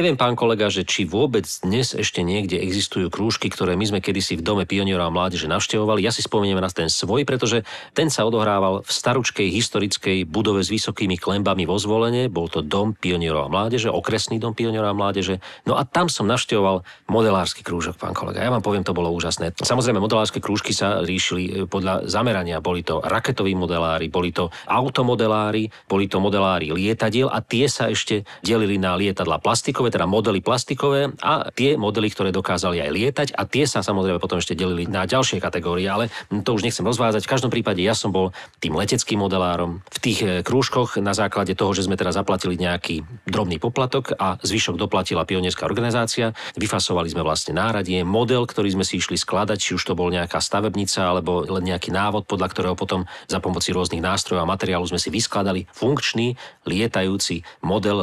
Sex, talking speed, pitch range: male, 185 wpm, 90-115 Hz